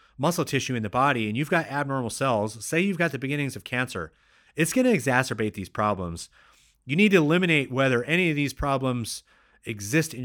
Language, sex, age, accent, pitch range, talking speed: English, male, 30-49, American, 110-140 Hz, 200 wpm